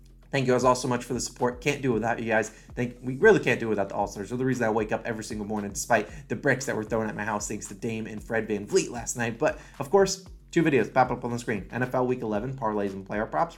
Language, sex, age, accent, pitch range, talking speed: English, male, 20-39, American, 110-140 Hz, 295 wpm